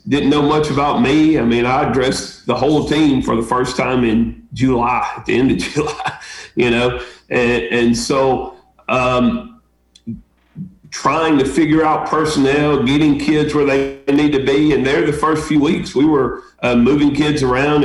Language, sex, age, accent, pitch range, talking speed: English, male, 40-59, American, 125-150 Hz, 180 wpm